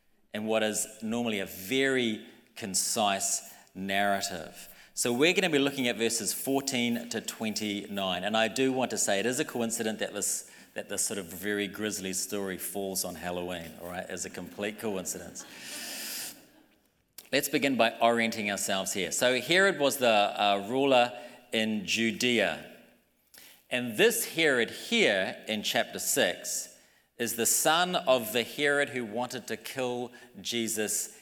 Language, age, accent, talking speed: English, 40-59, Australian, 150 wpm